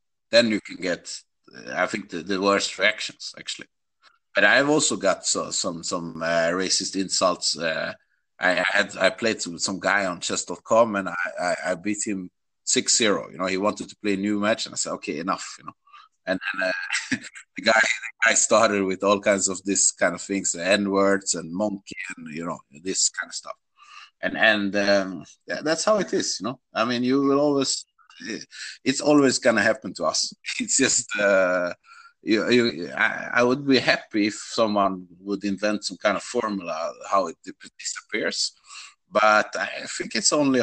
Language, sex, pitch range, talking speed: English, male, 95-125 Hz, 195 wpm